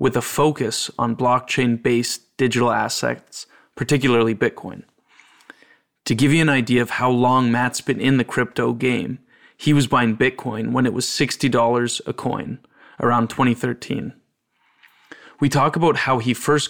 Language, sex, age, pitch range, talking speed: English, male, 20-39, 120-135 Hz, 145 wpm